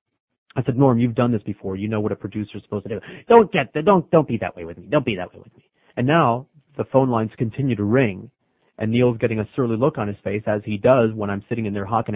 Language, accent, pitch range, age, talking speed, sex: English, American, 105-145 Hz, 30-49, 285 wpm, male